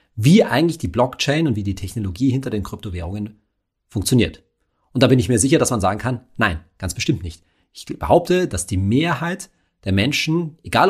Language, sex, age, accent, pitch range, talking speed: German, male, 40-59, German, 100-150 Hz, 185 wpm